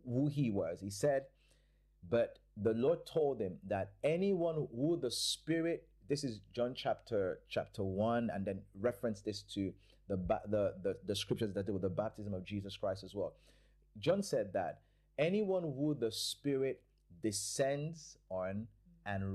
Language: English